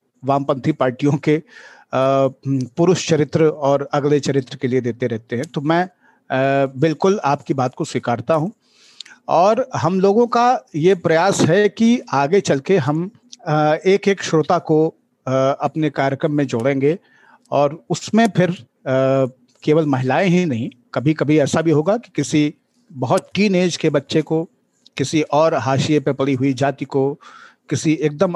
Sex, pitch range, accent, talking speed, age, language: male, 140-190 Hz, native, 150 wpm, 50-69, Hindi